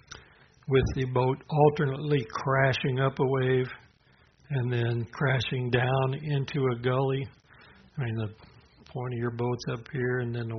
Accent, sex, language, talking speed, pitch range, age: American, male, English, 155 wpm, 125-145 Hz, 60-79